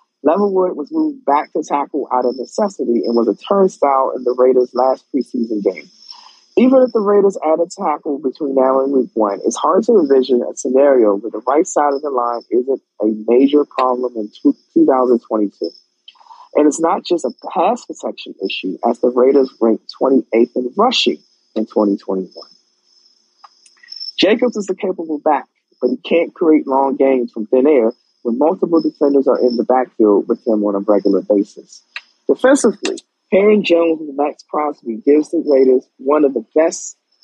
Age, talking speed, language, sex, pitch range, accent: 40-59, 170 wpm, English, male, 125-190 Hz, American